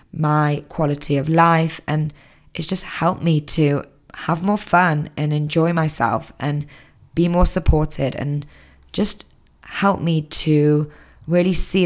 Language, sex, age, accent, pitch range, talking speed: English, female, 20-39, British, 145-170 Hz, 135 wpm